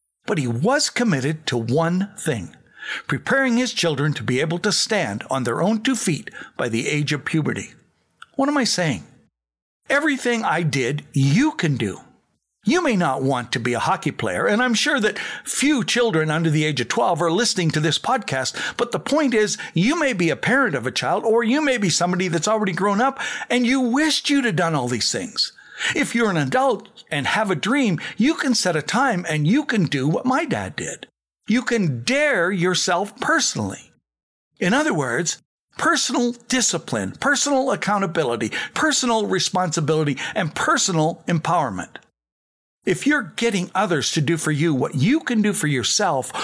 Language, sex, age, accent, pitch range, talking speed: English, male, 60-79, American, 155-250 Hz, 185 wpm